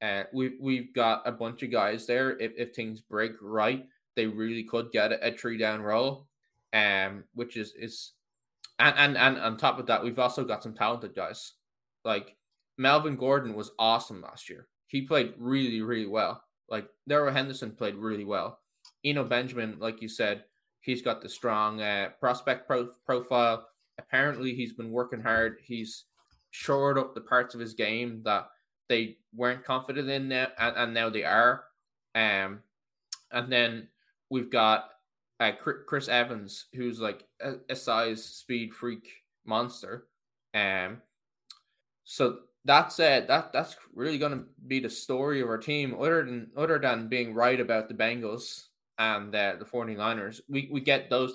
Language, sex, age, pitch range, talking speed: English, male, 10-29, 110-130 Hz, 165 wpm